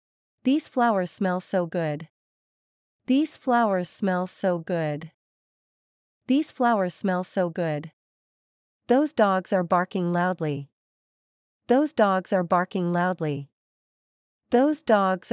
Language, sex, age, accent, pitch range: Chinese, female, 40-59, American, 175-220 Hz